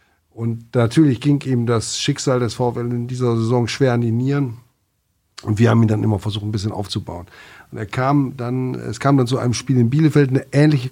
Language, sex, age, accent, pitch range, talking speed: German, male, 50-69, German, 115-135 Hz, 215 wpm